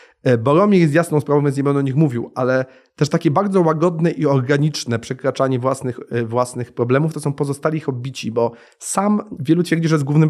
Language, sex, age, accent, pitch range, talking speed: Polish, male, 30-49, native, 135-160 Hz, 185 wpm